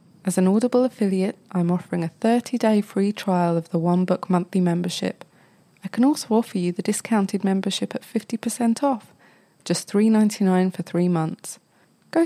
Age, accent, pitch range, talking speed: 20-39, British, 180-220 Hz, 160 wpm